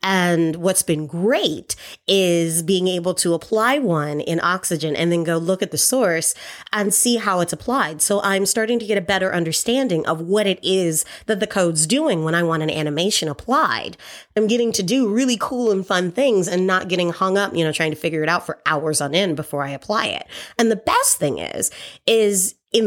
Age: 30-49